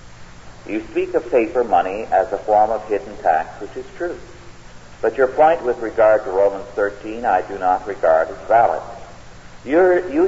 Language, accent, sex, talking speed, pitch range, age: English, American, male, 175 wpm, 100-155 Hz, 50-69